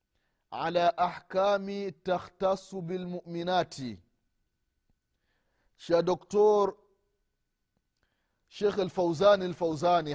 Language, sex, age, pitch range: Swahili, male, 30-49, 170-225 Hz